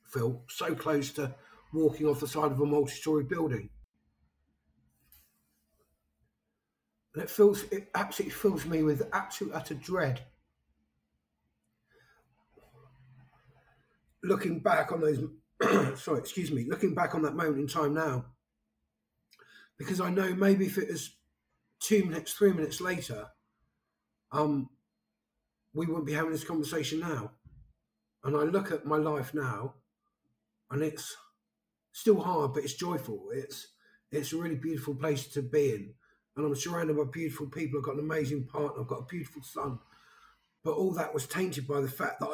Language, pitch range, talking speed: English, 130-160 Hz, 150 wpm